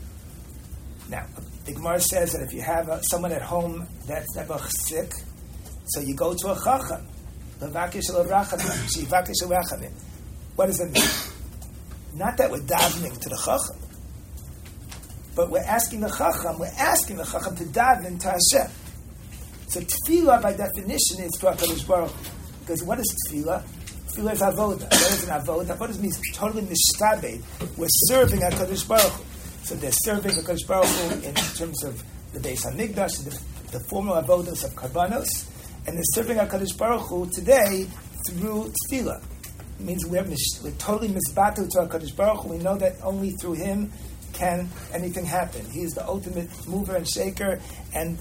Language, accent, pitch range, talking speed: English, American, 165-195 Hz, 160 wpm